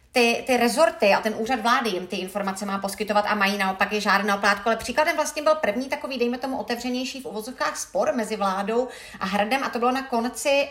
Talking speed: 215 wpm